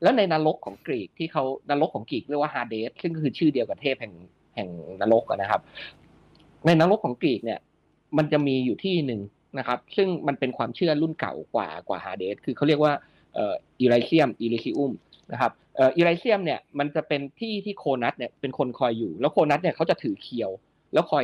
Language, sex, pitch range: Thai, male, 135-185 Hz